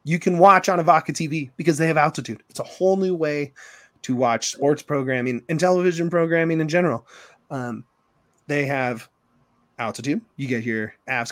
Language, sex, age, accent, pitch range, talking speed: English, male, 20-39, American, 130-170 Hz, 175 wpm